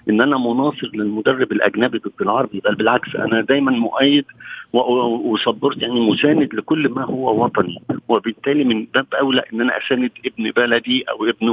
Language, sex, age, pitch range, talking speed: Arabic, male, 50-69, 120-155 Hz, 155 wpm